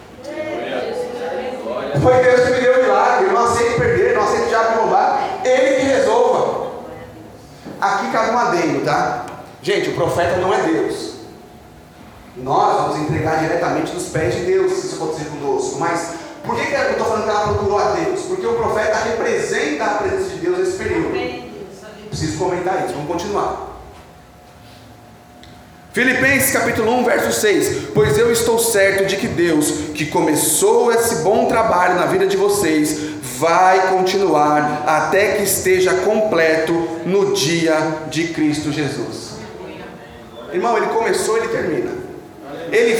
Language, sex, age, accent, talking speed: Portuguese, male, 30-49, Brazilian, 145 wpm